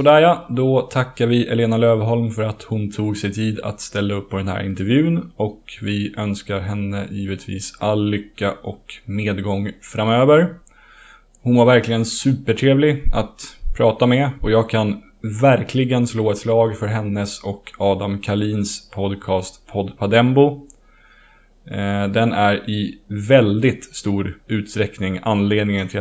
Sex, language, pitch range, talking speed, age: male, Swedish, 100-115 Hz, 140 wpm, 20-39